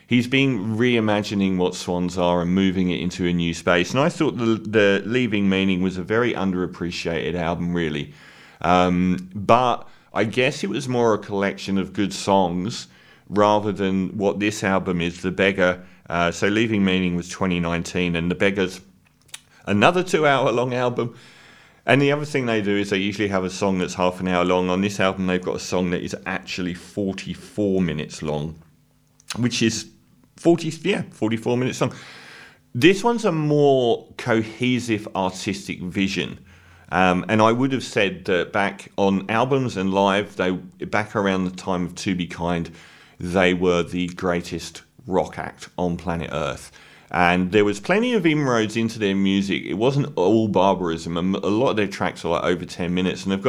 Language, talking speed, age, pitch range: English, 180 wpm, 40-59, 90-110 Hz